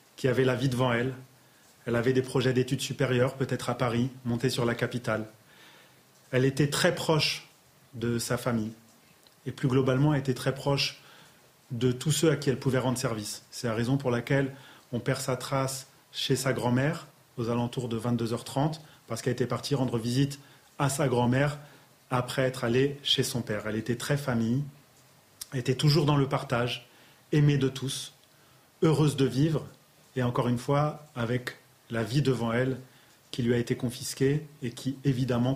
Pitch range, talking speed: 125-145 Hz, 175 wpm